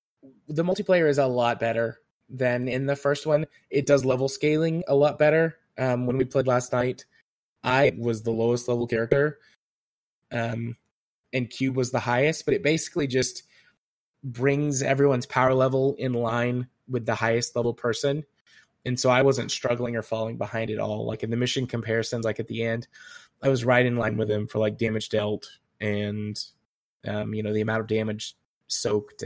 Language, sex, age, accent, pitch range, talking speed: English, male, 20-39, American, 115-140 Hz, 185 wpm